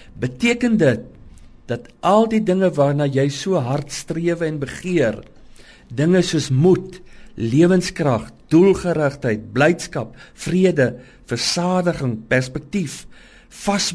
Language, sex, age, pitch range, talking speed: English, male, 50-69, 130-180 Hz, 100 wpm